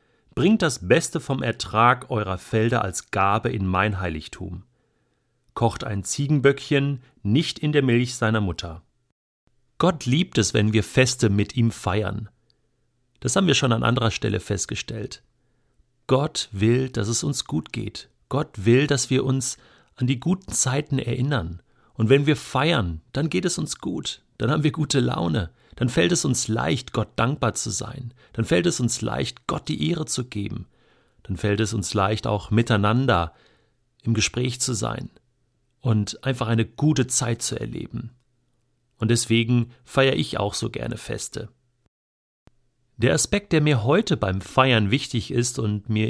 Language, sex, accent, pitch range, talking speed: German, male, German, 110-135 Hz, 165 wpm